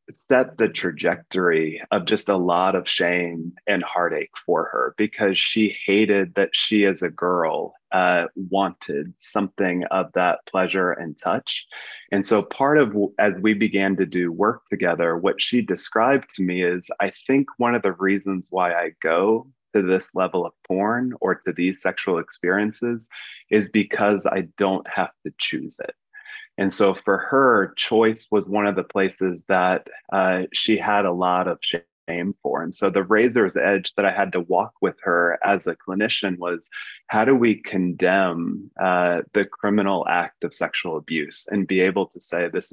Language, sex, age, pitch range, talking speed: English, male, 20-39, 90-105 Hz, 175 wpm